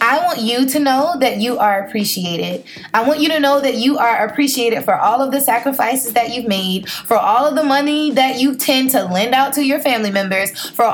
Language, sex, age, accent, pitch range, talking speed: English, female, 20-39, American, 225-285 Hz, 230 wpm